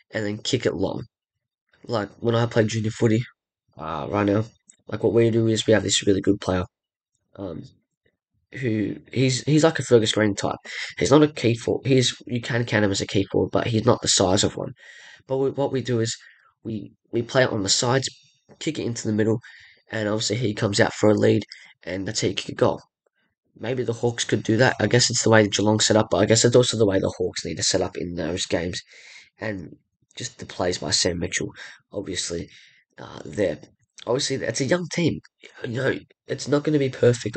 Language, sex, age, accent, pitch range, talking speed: English, male, 10-29, British, 105-125 Hz, 225 wpm